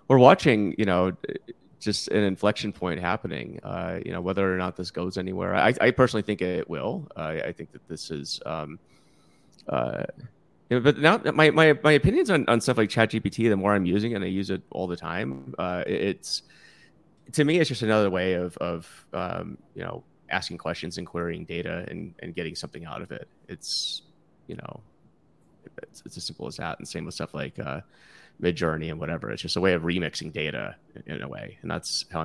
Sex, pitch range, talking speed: male, 85-110 Hz, 210 wpm